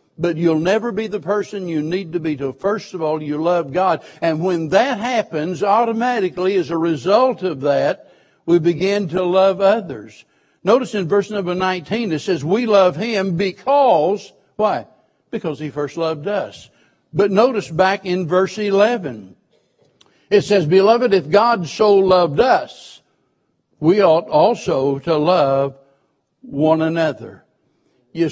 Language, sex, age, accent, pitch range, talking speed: English, male, 60-79, American, 155-200 Hz, 150 wpm